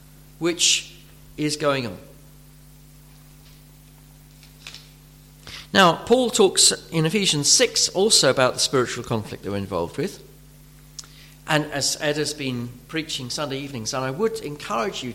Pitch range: 145-215 Hz